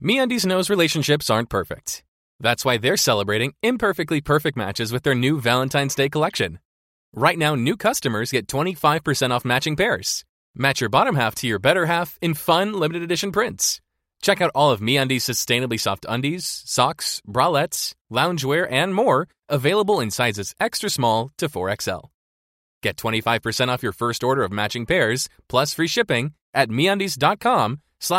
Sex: male